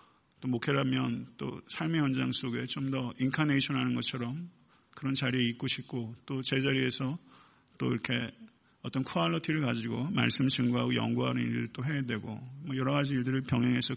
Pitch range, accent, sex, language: 125-150 Hz, native, male, Korean